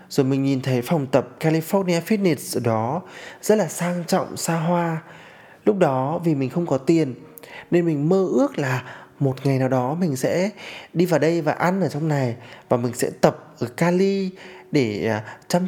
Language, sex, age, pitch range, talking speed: Vietnamese, male, 20-39, 130-185 Hz, 190 wpm